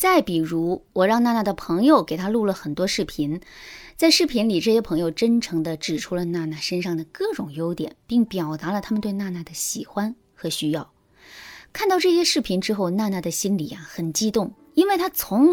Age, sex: 20-39, female